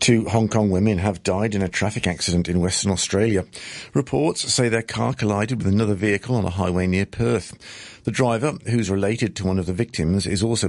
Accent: British